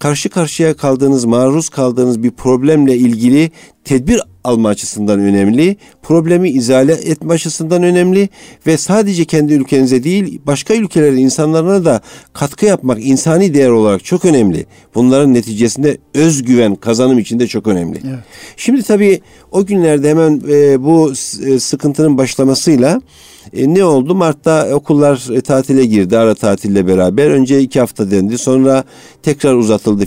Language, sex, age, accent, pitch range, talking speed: Turkish, male, 50-69, native, 125-160 Hz, 130 wpm